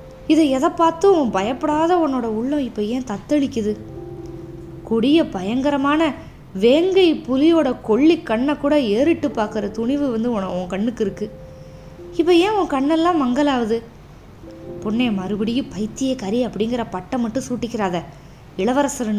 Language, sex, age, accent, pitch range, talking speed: Tamil, female, 20-39, native, 190-270 Hz, 120 wpm